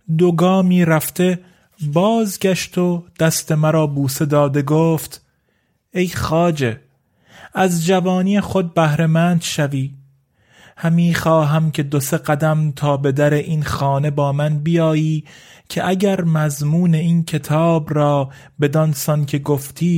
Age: 30-49